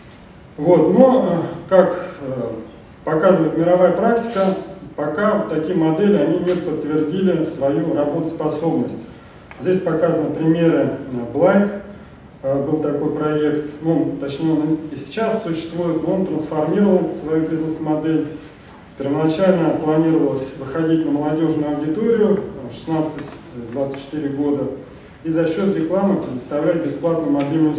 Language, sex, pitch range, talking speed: Russian, male, 145-180 Hz, 100 wpm